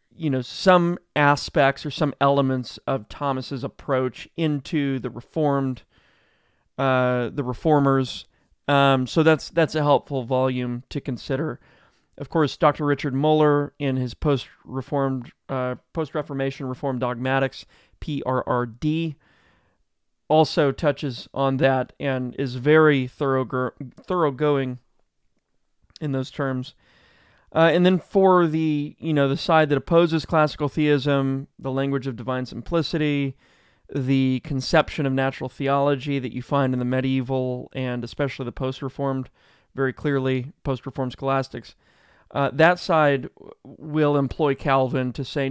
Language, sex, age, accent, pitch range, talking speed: English, male, 30-49, American, 130-150 Hz, 125 wpm